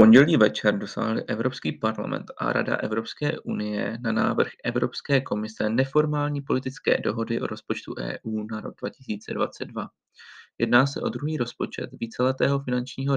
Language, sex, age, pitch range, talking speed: Czech, male, 30-49, 110-140 Hz, 130 wpm